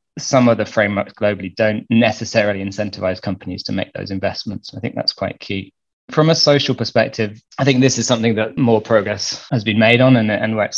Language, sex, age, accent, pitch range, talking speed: English, male, 20-39, British, 100-115 Hz, 205 wpm